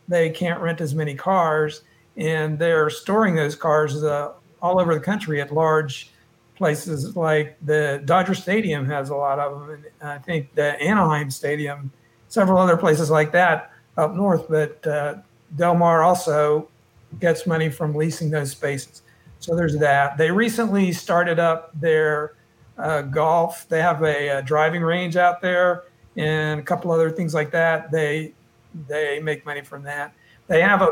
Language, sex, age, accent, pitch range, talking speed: English, male, 50-69, American, 145-165 Hz, 165 wpm